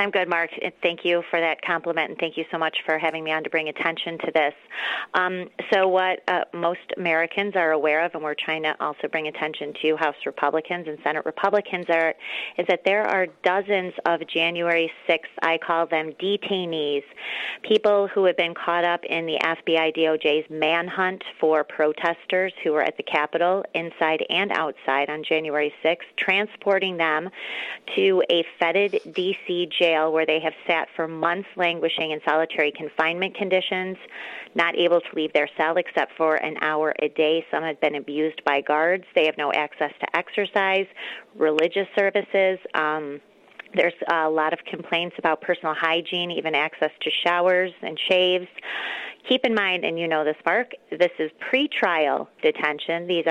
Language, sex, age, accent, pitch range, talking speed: English, female, 30-49, American, 155-185 Hz, 170 wpm